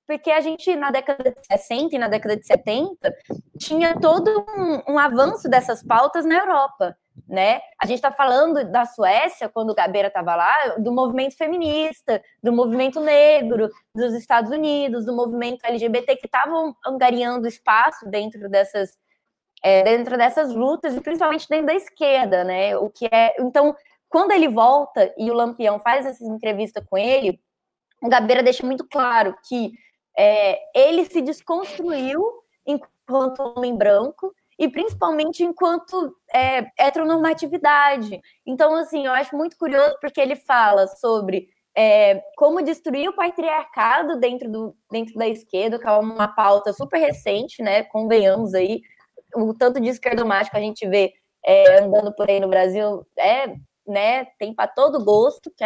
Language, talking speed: Portuguese, 155 wpm